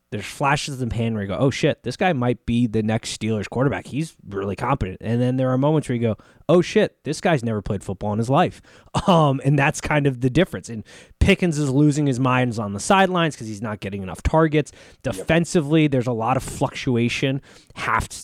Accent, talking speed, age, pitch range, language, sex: American, 225 wpm, 20-39, 110-165 Hz, English, male